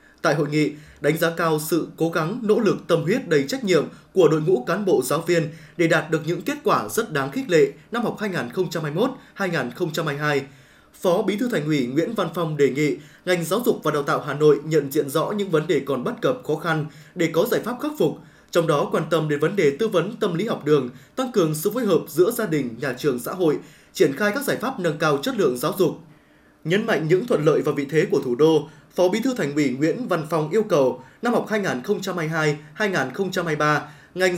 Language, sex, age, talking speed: Vietnamese, male, 20-39, 230 wpm